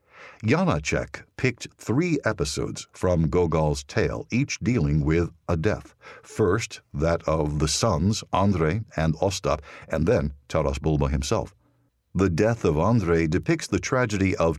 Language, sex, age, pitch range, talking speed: English, male, 60-79, 75-105 Hz, 135 wpm